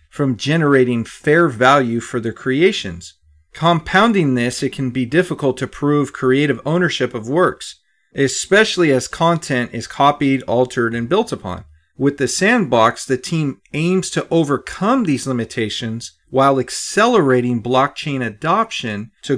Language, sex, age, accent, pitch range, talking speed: English, male, 40-59, American, 120-155 Hz, 135 wpm